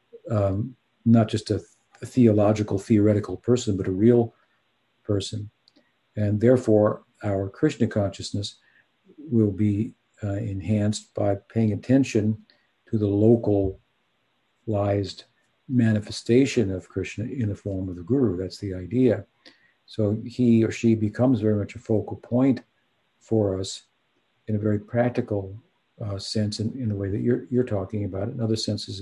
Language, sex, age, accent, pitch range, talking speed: English, male, 50-69, American, 100-120 Hz, 145 wpm